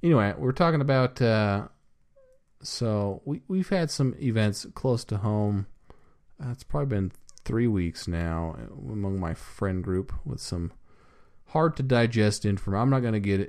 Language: English